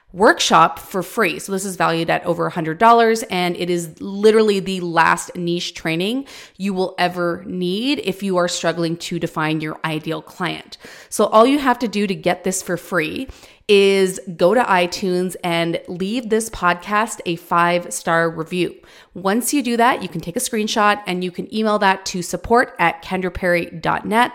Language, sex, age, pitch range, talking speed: English, female, 30-49, 175-210 Hz, 180 wpm